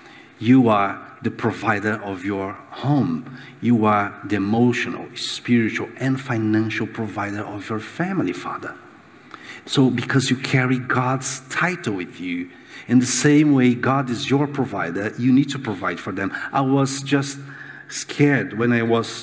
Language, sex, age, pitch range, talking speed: English, male, 50-69, 115-150 Hz, 150 wpm